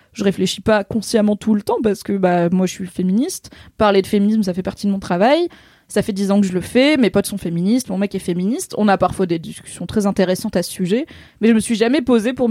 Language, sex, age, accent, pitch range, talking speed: French, female, 20-39, French, 190-225 Hz, 275 wpm